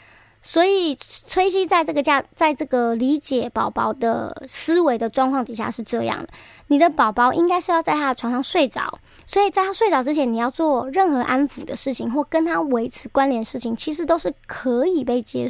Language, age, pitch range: Chinese, 20-39, 245-320 Hz